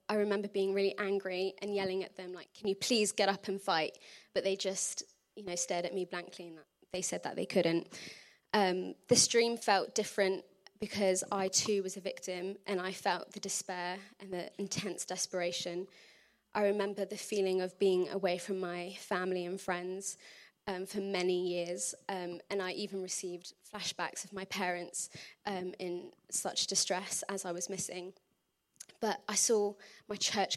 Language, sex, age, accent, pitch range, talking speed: English, female, 20-39, British, 185-200 Hz, 175 wpm